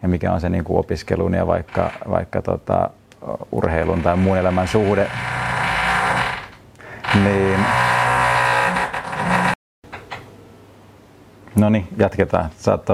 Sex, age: male, 30-49